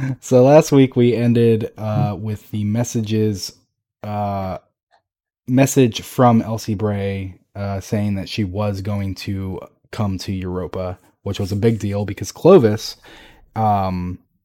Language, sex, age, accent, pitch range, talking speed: English, male, 20-39, American, 95-115 Hz, 135 wpm